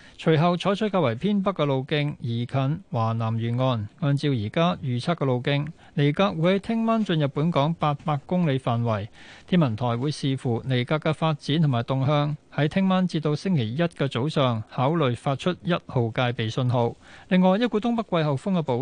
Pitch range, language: 125-175 Hz, Chinese